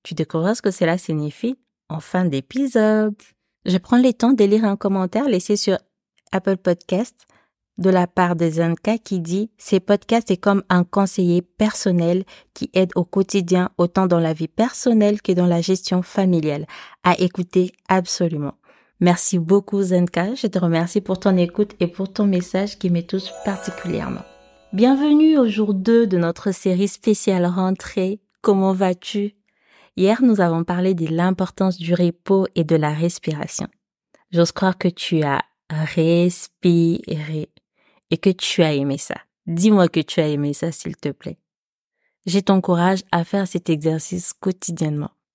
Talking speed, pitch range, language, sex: 165 wpm, 170-200 Hz, French, female